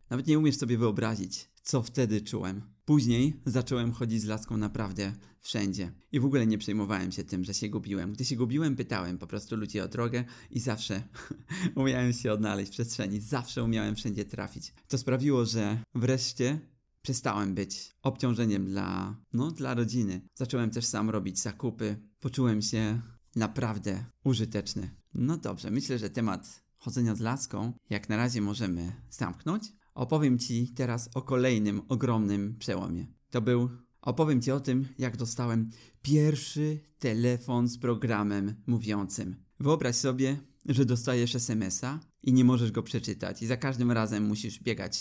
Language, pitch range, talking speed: Polish, 105-130 Hz, 150 wpm